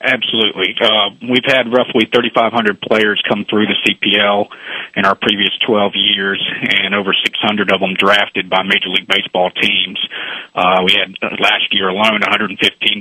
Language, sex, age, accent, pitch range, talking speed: English, male, 40-59, American, 95-105 Hz, 155 wpm